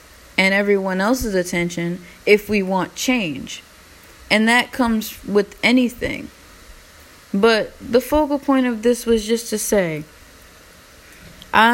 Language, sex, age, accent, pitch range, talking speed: English, female, 20-39, American, 185-215 Hz, 125 wpm